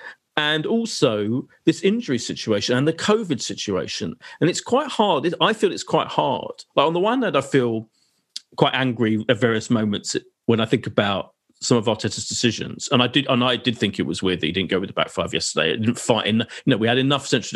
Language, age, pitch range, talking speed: English, 40-59, 125-210 Hz, 225 wpm